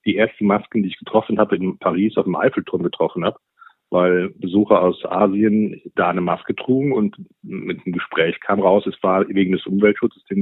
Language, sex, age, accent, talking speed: German, male, 40-59, German, 195 wpm